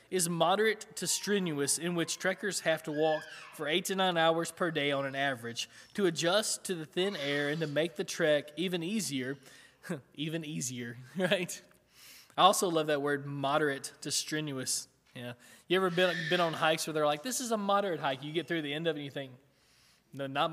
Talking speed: 210 wpm